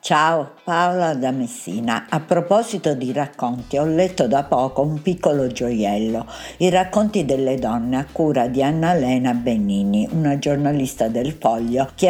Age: 60-79